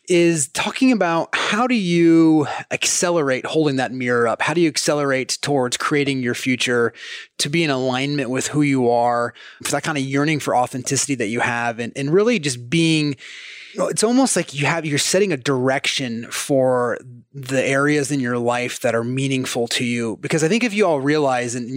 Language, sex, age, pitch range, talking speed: English, male, 30-49, 130-160 Hz, 195 wpm